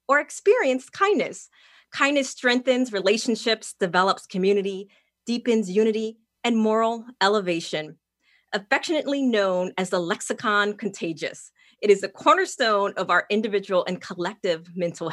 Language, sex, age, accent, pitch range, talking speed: English, female, 30-49, American, 190-250 Hz, 115 wpm